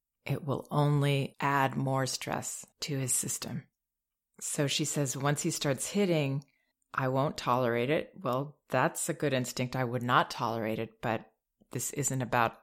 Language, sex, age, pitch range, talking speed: English, female, 30-49, 125-145 Hz, 160 wpm